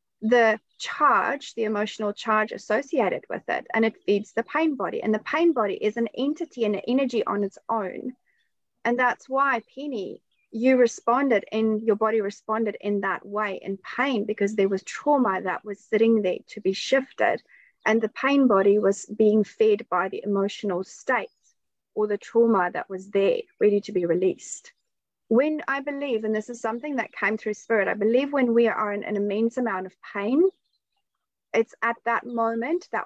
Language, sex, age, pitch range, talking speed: English, female, 30-49, 205-255 Hz, 180 wpm